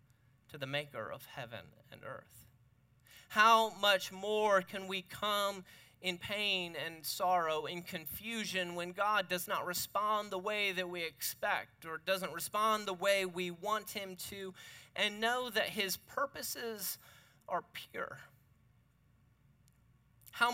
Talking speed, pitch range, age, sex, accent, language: 135 wpm, 140-225 Hz, 30-49, male, American, English